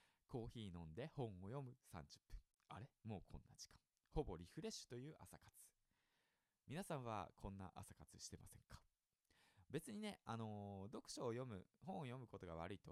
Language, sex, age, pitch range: Japanese, male, 20-39, 95-145 Hz